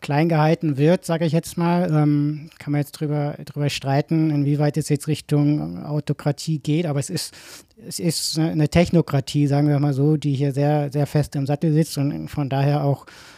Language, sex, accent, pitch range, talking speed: German, male, German, 145-170 Hz, 195 wpm